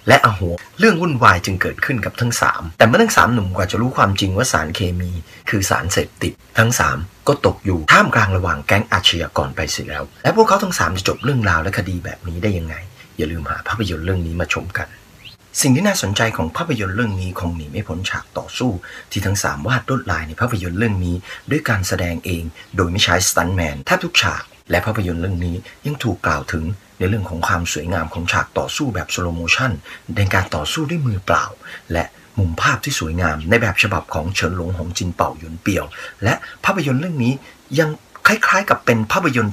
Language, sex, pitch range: Thai, male, 85-120 Hz